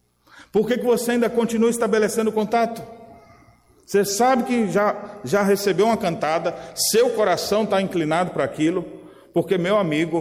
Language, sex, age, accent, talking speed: Portuguese, male, 40-59, Brazilian, 145 wpm